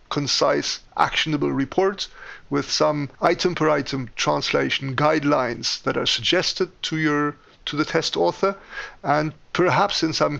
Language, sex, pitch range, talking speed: English, male, 145-180 Hz, 120 wpm